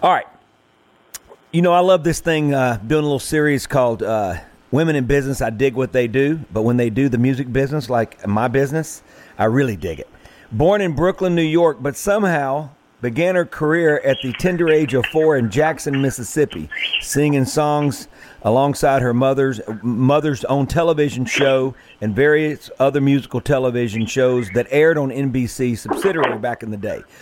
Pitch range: 115-150 Hz